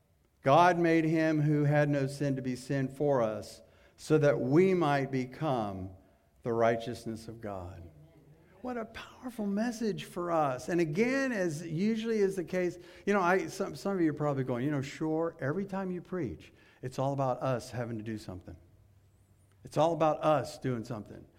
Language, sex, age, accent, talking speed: English, male, 50-69, American, 180 wpm